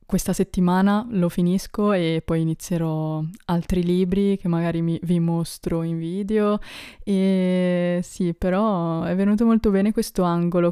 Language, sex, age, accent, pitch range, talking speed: Italian, female, 20-39, native, 165-180 Hz, 135 wpm